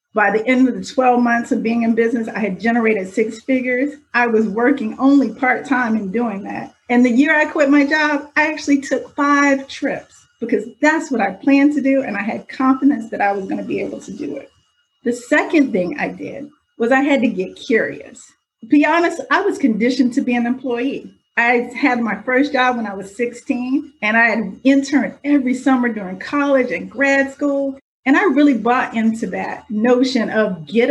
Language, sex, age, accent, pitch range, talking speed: English, female, 40-59, American, 220-275 Hz, 205 wpm